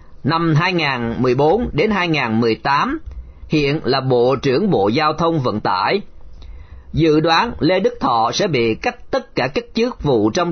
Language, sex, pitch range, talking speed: Vietnamese, male, 115-170 Hz, 155 wpm